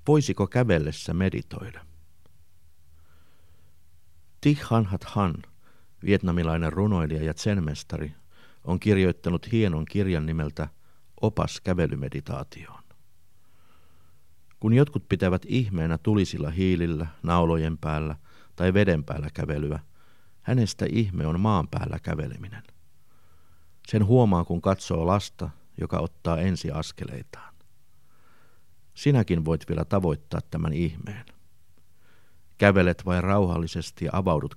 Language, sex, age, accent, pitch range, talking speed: Finnish, male, 50-69, native, 80-95 Hz, 95 wpm